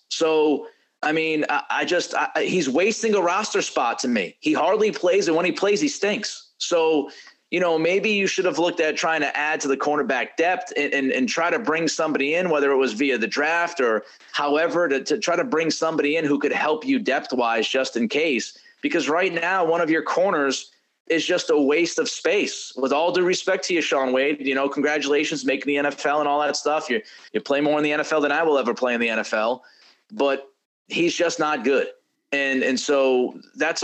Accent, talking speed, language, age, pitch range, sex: American, 225 wpm, English, 30-49, 130-165 Hz, male